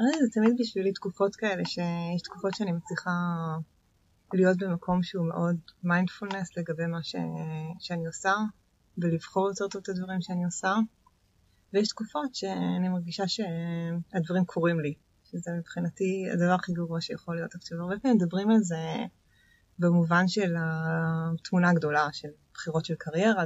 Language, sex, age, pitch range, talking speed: Hebrew, female, 20-39, 165-195 Hz, 140 wpm